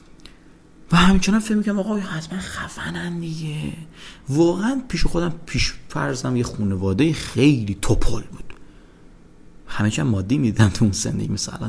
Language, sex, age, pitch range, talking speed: English, male, 40-59, 110-170 Hz, 135 wpm